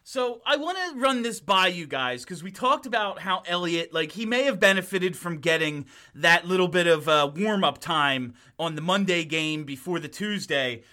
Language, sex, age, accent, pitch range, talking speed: English, male, 30-49, American, 165-230 Hz, 200 wpm